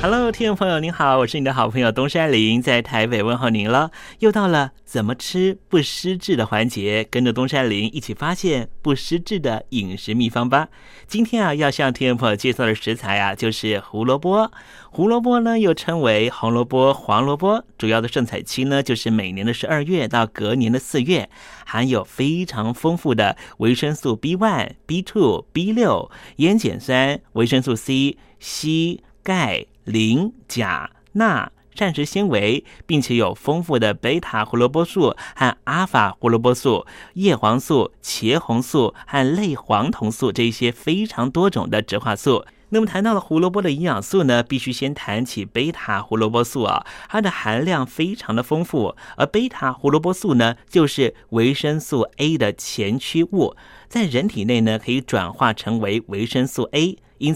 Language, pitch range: Chinese, 115-170 Hz